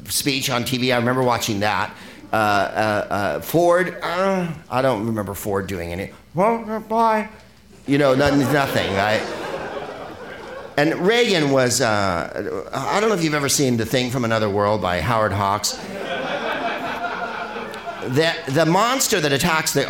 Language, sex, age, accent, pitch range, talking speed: English, male, 50-69, American, 105-150 Hz, 150 wpm